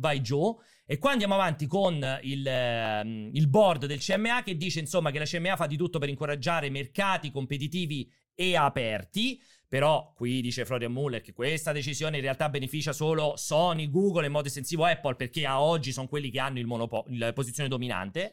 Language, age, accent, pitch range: Italian, 30-49, native, 135-175 Hz